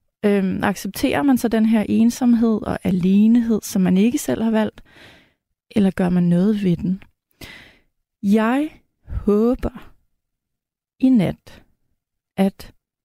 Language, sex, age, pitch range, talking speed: Danish, female, 30-49, 195-240 Hz, 120 wpm